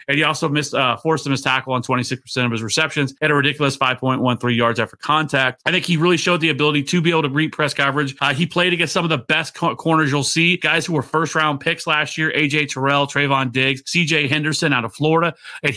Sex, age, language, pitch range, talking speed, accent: male, 30-49, English, 130-165 Hz, 245 wpm, American